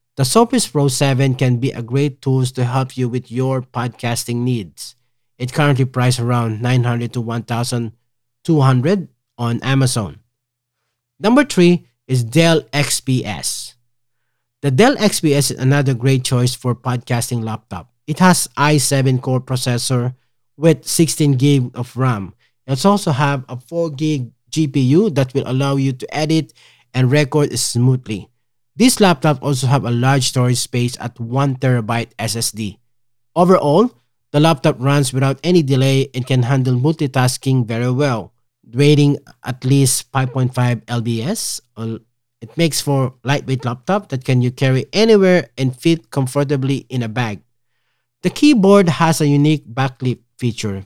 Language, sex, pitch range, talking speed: English, male, 120-145 Hz, 140 wpm